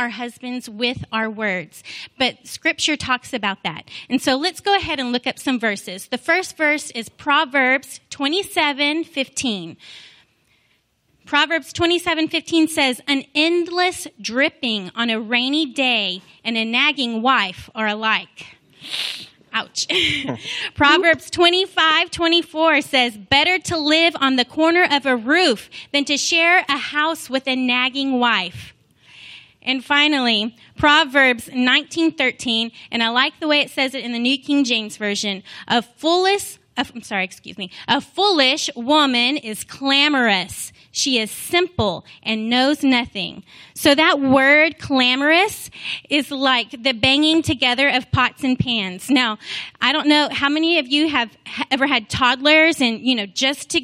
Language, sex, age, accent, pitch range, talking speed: English, female, 30-49, American, 245-305 Hz, 145 wpm